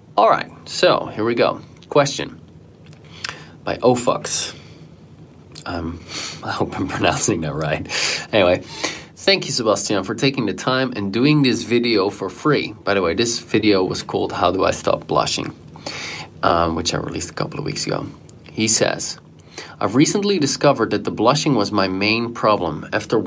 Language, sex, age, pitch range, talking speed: English, male, 30-49, 105-140 Hz, 160 wpm